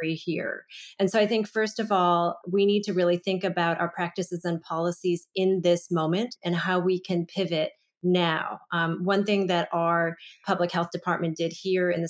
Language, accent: English, American